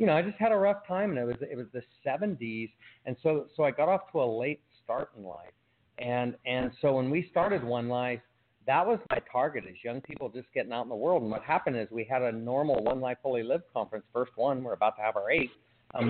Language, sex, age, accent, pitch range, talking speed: English, male, 40-59, American, 115-150 Hz, 260 wpm